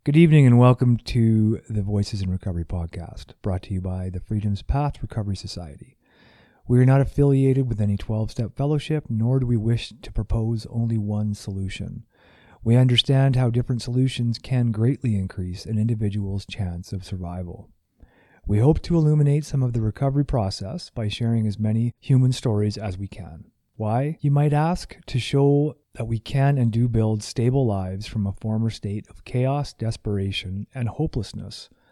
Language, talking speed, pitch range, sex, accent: English, 170 wpm, 105-130 Hz, male, American